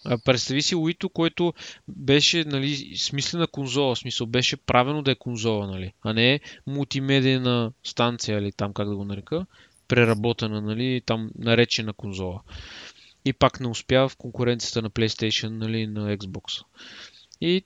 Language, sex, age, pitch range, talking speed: Bulgarian, male, 20-39, 120-150 Hz, 145 wpm